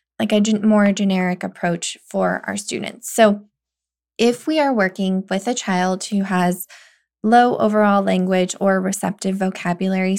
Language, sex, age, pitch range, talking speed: English, female, 20-39, 185-215 Hz, 140 wpm